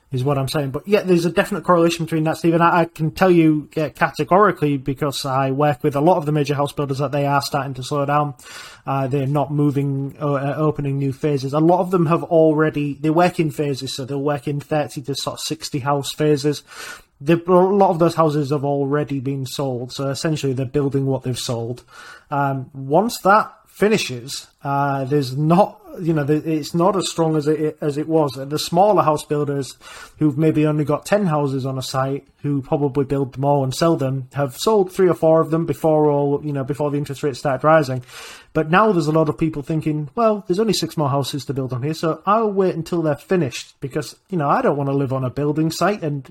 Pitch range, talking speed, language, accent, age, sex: 140-165 Hz, 225 wpm, English, British, 20-39, male